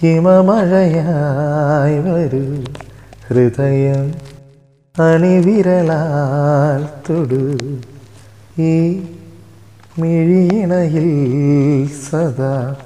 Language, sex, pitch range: Malayalam, male, 145-215 Hz